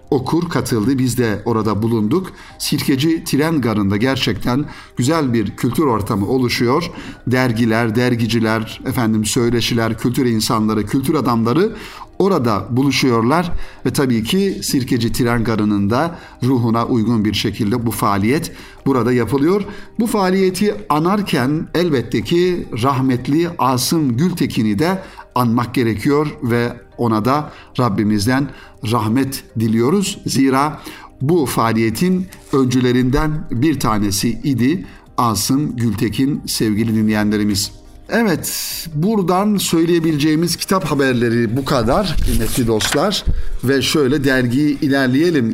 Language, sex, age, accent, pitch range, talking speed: Turkish, male, 60-79, native, 115-150 Hz, 105 wpm